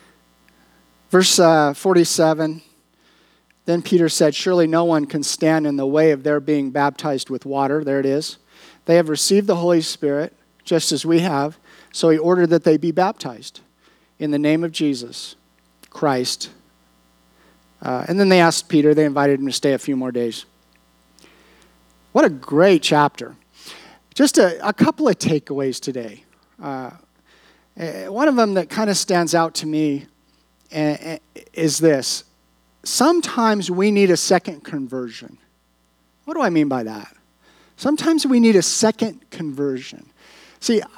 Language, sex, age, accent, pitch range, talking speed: English, male, 50-69, American, 140-205 Hz, 150 wpm